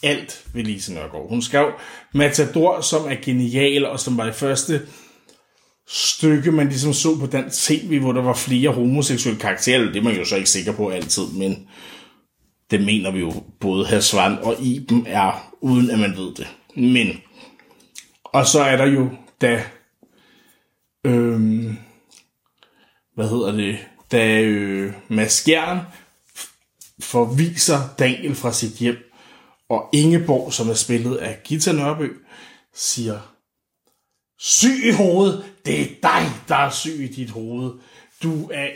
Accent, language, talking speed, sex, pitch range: native, Danish, 145 wpm, male, 120-165 Hz